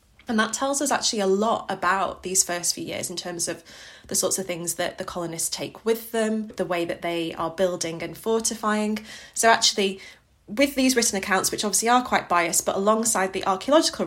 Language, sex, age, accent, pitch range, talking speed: English, female, 20-39, British, 175-220 Hz, 205 wpm